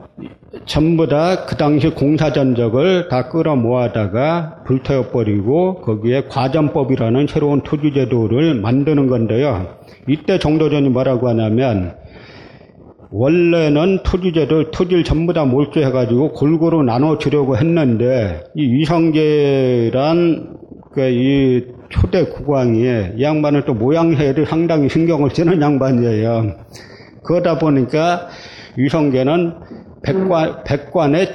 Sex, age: male, 40-59